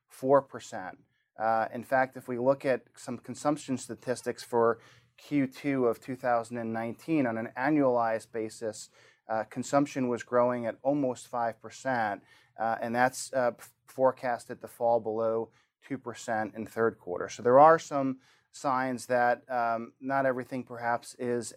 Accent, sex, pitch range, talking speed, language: American, male, 115-130 Hz, 145 wpm, English